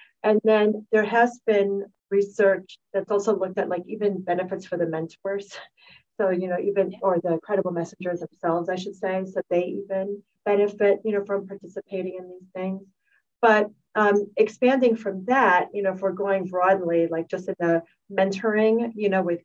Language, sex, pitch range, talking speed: English, female, 180-215 Hz, 180 wpm